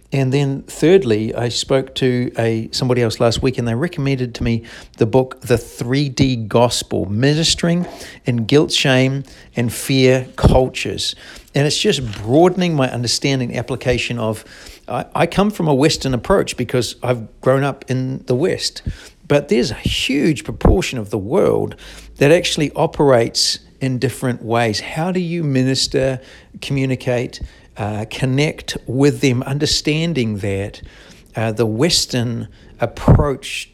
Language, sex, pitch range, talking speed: English, male, 115-140 Hz, 140 wpm